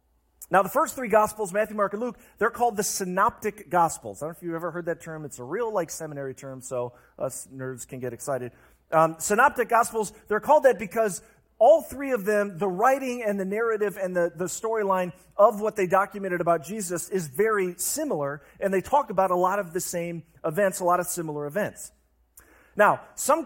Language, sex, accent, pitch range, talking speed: English, male, American, 170-225 Hz, 205 wpm